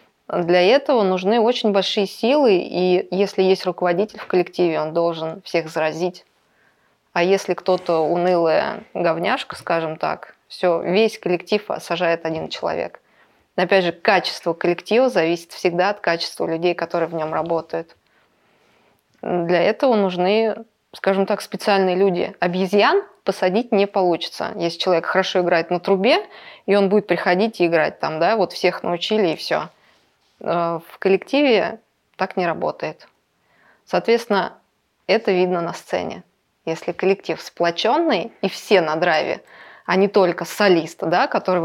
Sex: female